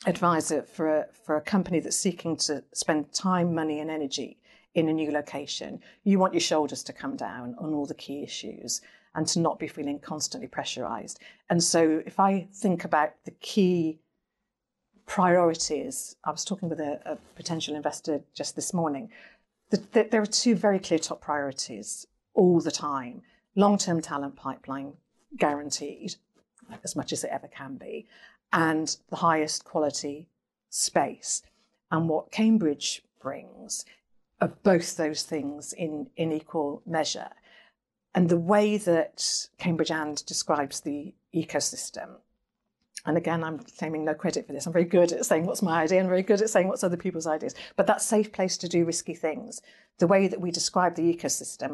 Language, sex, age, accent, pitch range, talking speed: English, female, 50-69, British, 150-185 Hz, 165 wpm